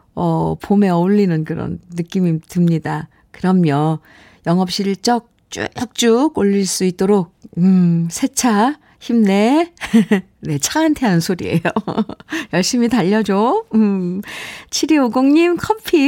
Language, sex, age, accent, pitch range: Korean, female, 50-69, native, 175-245 Hz